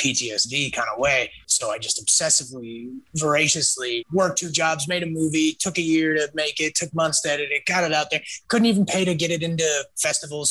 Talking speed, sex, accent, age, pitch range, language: 215 wpm, male, American, 30-49, 140-180 Hz, English